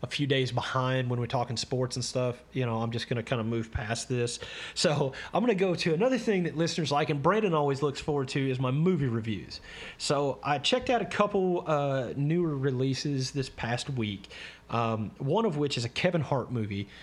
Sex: male